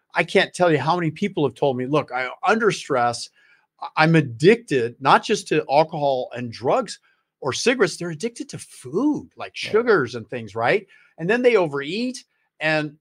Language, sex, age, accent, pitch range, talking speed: English, male, 40-59, American, 140-185 Hz, 175 wpm